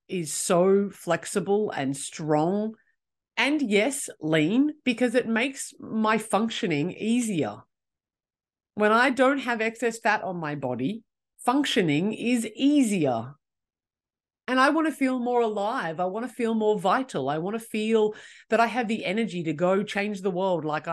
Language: English